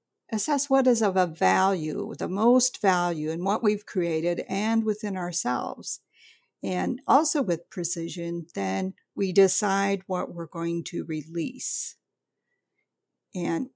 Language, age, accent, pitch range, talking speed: English, 50-69, American, 170-215 Hz, 125 wpm